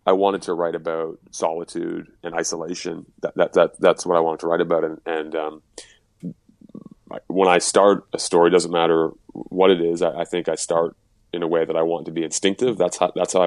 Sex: male